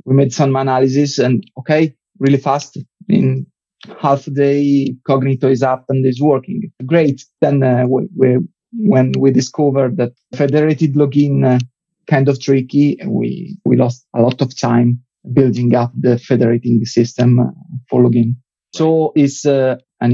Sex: male